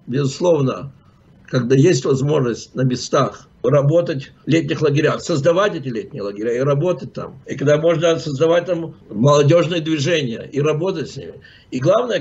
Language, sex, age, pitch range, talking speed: English, male, 60-79, 140-170 Hz, 145 wpm